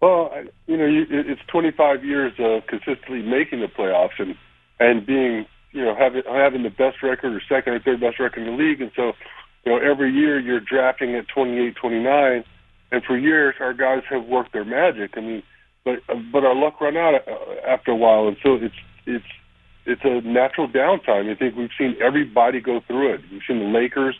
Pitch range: 115-140 Hz